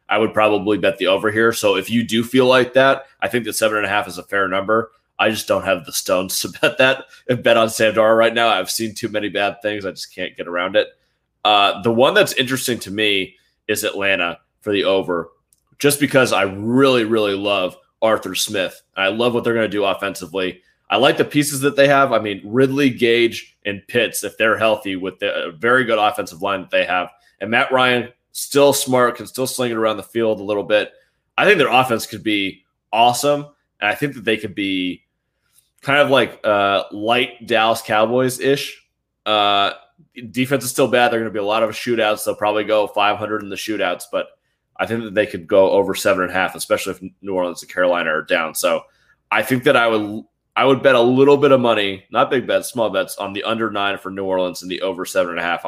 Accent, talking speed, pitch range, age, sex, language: American, 225 wpm, 100-125 Hz, 20-39, male, English